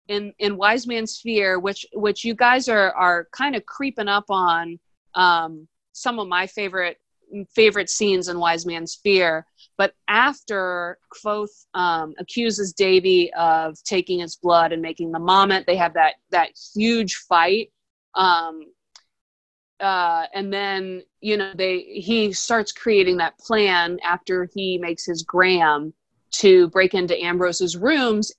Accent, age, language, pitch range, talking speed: American, 30-49, English, 170-205 Hz, 145 wpm